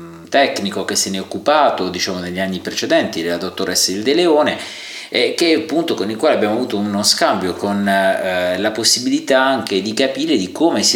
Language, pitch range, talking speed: Italian, 95-115 Hz, 195 wpm